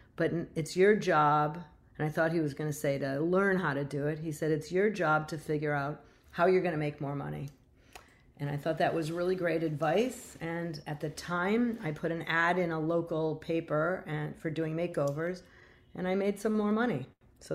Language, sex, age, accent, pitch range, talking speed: English, female, 40-59, American, 150-180 Hz, 215 wpm